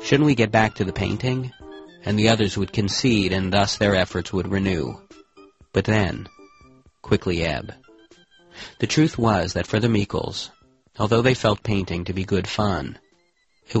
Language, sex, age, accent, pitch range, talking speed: English, male, 40-59, American, 90-110 Hz, 165 wpm